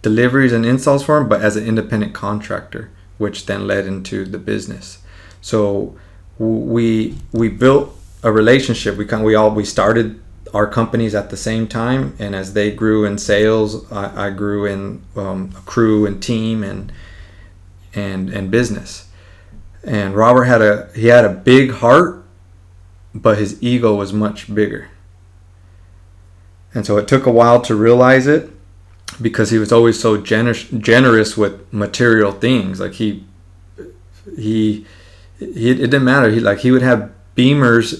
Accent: American